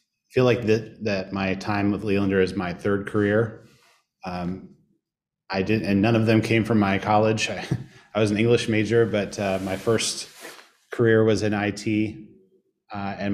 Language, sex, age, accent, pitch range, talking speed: English, male, 30-49, American, 95-110 Hz, 175 wpm